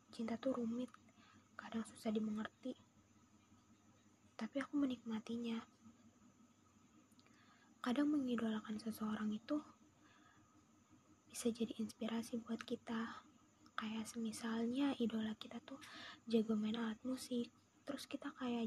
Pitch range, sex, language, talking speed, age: 220-250 Hz, female, Indonesian, 95 wpm, 20-39